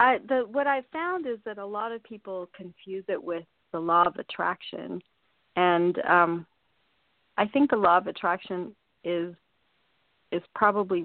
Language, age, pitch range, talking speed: English, 40-59, 175-245 Hz, 160 wpm